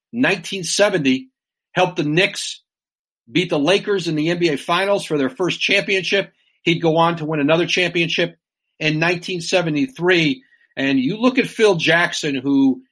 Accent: American